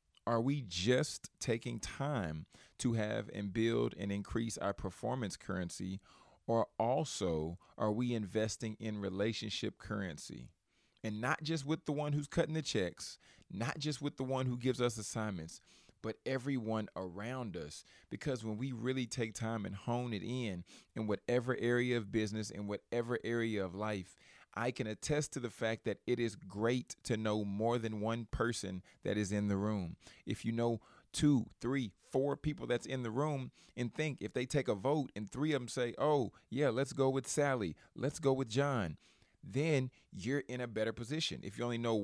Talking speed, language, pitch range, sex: 185 wpm, English, 105-130 Hz, male